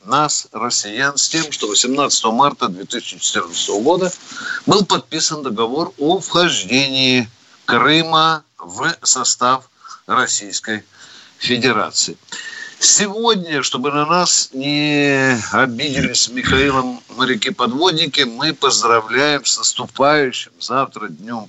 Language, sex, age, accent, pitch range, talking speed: Russian, male, 50-69, native, 130-175 Hz, 90 wpm